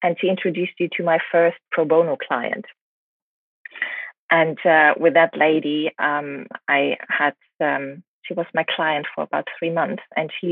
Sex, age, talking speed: female, 20-39, 165 wpm